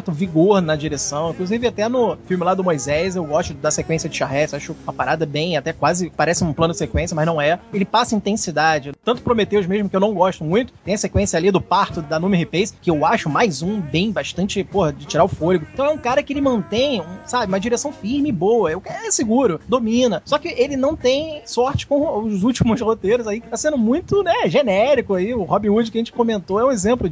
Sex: male